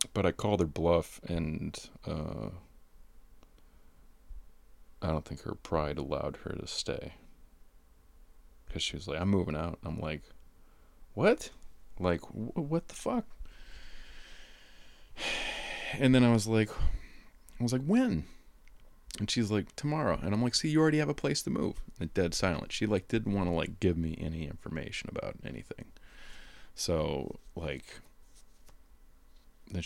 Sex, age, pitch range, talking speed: male, 30-49, 80-110 Hz, 150 wpm